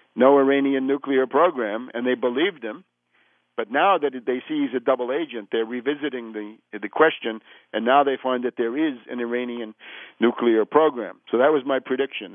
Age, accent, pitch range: 50-69, American, 120-140 Hz